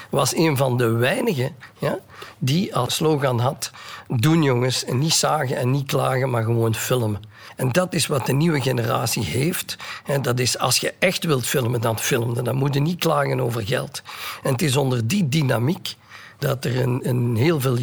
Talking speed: 180 wpm